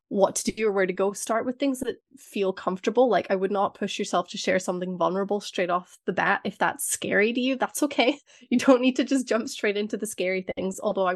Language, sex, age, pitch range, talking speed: English, female, 20-39, 185-240 Hz, 255 wpm